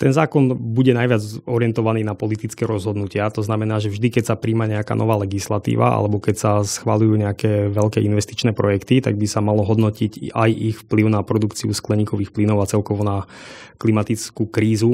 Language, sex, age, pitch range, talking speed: Slovak, male, 20-39, 105-115 Hz, 175 wpm